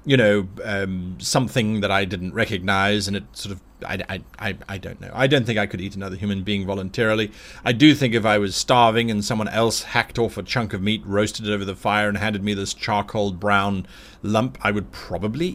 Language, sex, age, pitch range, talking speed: English, male, 30-49, 100-125 Hz, 230 wpm